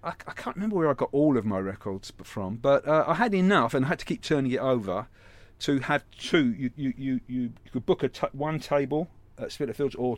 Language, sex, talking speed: English, male, 240 wpm